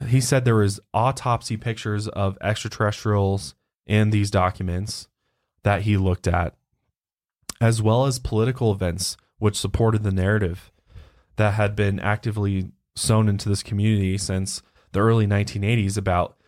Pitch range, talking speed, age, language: 95-110 Hz, 135 wpm, 20-39, English